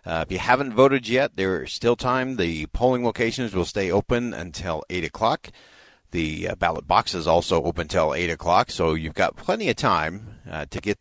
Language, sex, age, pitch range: English, male, 40-59, 85-110 Hz